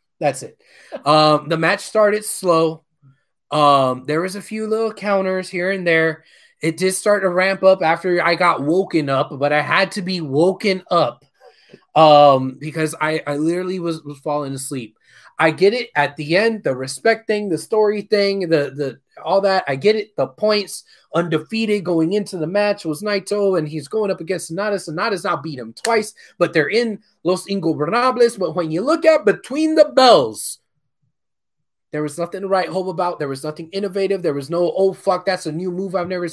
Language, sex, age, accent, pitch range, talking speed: English, male, 20-39, American, 155-200 Hz, 195 wpm